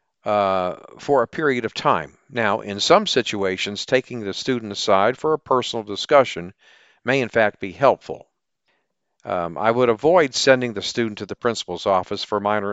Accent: American